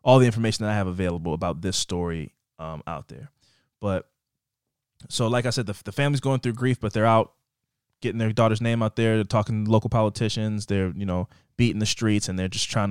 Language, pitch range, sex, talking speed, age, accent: English, 100-130 Hz, male, 225 wpm, 20-39, American